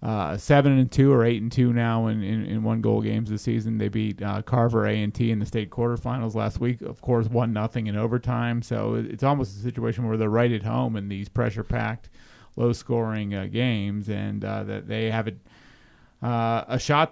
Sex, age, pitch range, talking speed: male, 30-49, 110-125 Hz, 220 wpm